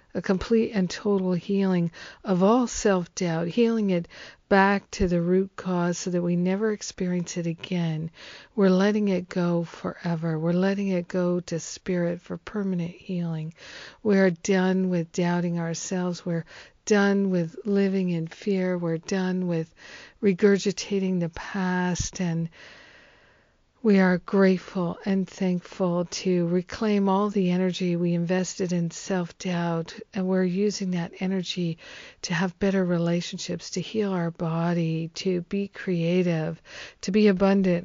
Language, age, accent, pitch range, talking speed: English, 50-69, American, 175-195 Hz, 140 wpm